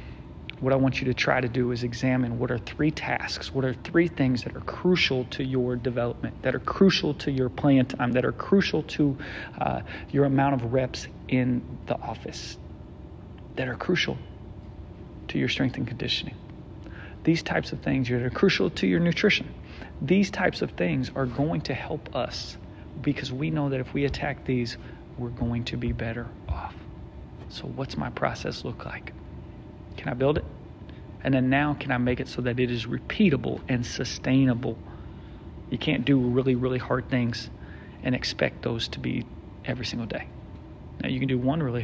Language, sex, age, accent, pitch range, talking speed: English, male, 40-59, American, 115-135 Hz, 185 wpm